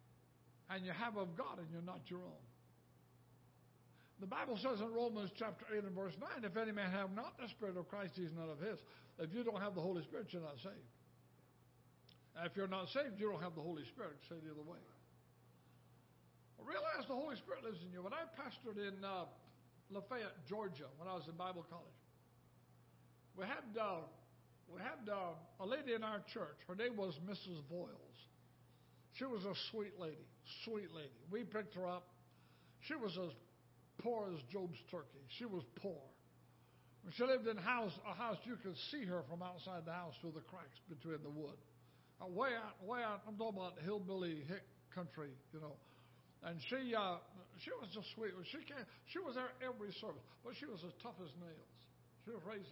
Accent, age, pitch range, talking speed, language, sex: American, 60-79, 165-220 Hz, 200 wpm, English, male